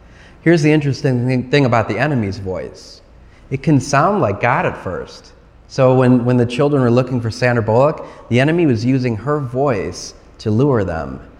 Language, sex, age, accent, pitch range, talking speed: English, male, 30-49, American, 105-135 Hz, 180 wpm